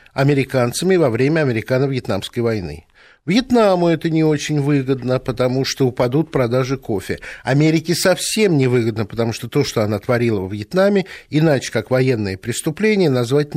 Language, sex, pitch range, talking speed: Russian, male, 130-180 Hz, 140 wpm